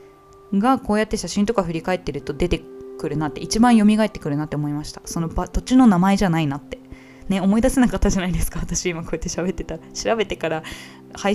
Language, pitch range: Japanese, 160-220 Hz